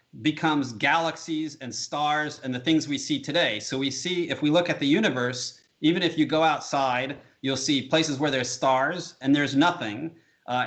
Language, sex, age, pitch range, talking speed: English, male, 30-49, 125-160 Hz, 190 wpm